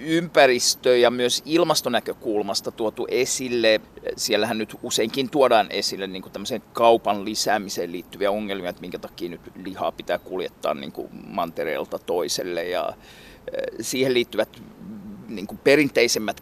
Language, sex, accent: Finnish, male, native